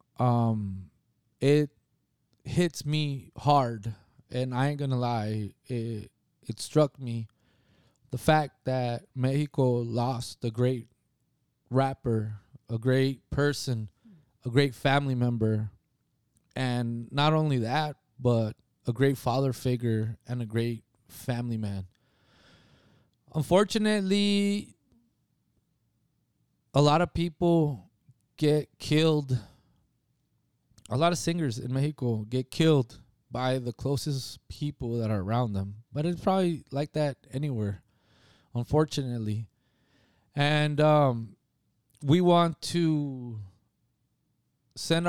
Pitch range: 115-155 Hz